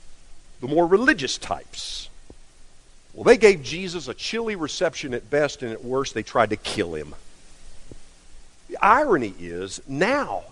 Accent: American